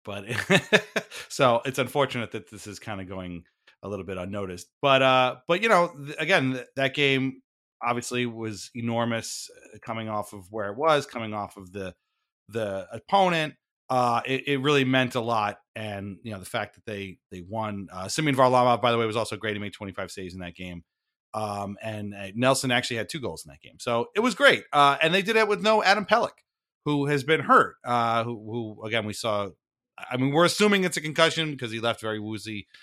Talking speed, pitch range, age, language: 215 wpm, 105-140 Hz, 30-49, English